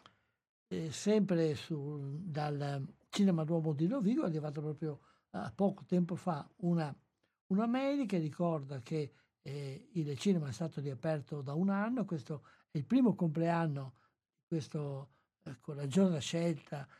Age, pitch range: 60-79, 150-185 Hz